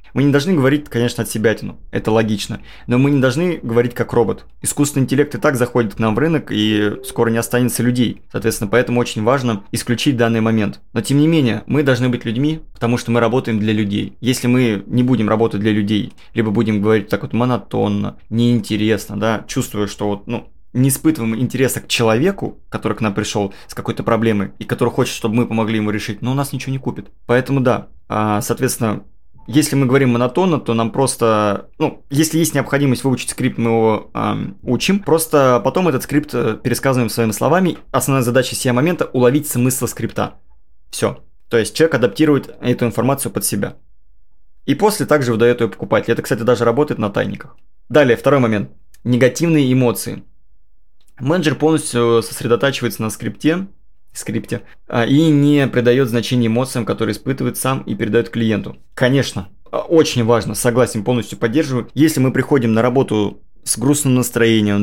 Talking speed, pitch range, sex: 175 wpm, 110-130 Hz, male